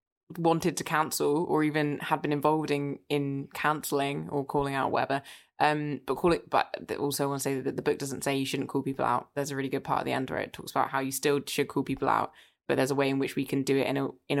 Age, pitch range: 20-39, 140-185 Hz